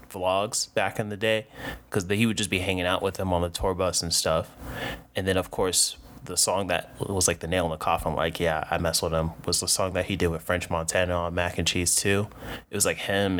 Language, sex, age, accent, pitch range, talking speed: English, male, 20-39, American, 85-105 Hz, 260 wpm